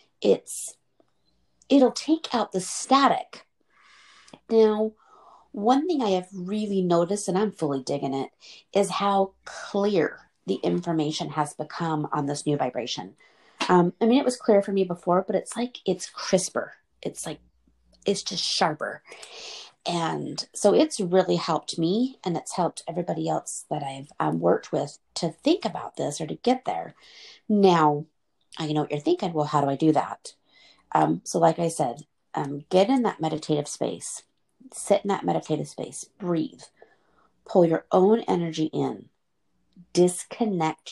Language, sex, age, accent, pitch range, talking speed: English, female, 40-59, American, 160-215 Hz, 155 wpm